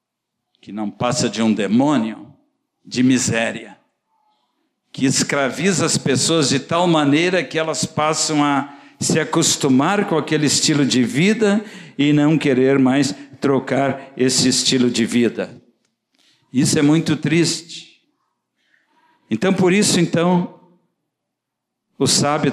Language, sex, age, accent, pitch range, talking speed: Portuguese, male, 60-79, Brazilian, 125-190 Hz, 115 wpm